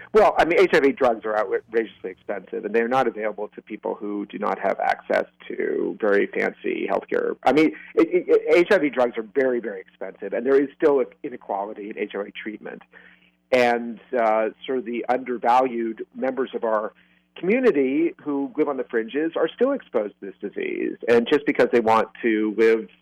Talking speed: 180 wpm